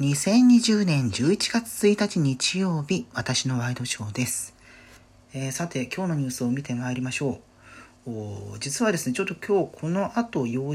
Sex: male